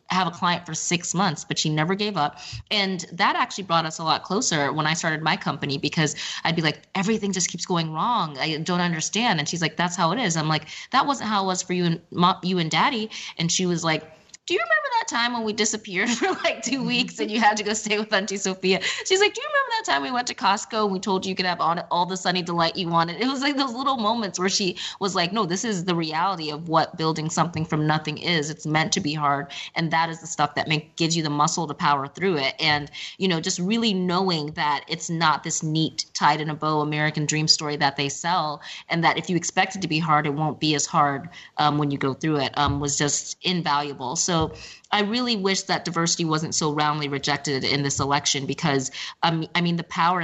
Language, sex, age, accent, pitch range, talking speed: English, female, 20-39, American, 150-190 Hz, 255 wpm